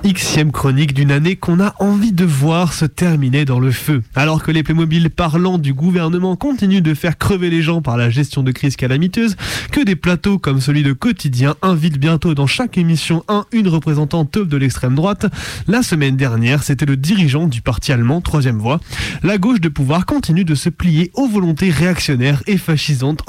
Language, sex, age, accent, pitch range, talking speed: French, male, 20-39, French, 140-185 Hz, 195 wpm